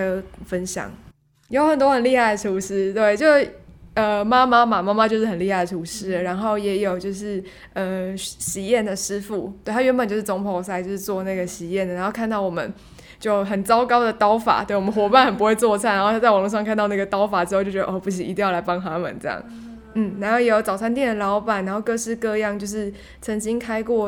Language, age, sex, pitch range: Chinese, 20-39, female, 190-230 Hz